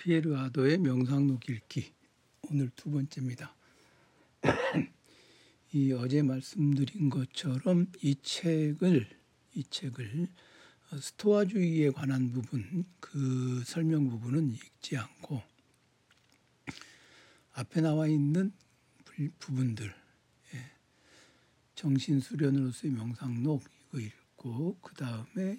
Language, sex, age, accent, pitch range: Korean, male, 60-79, native, 125-155 Hz